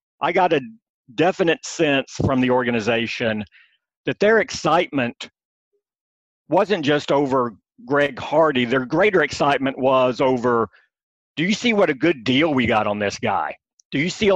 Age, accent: 50-69, American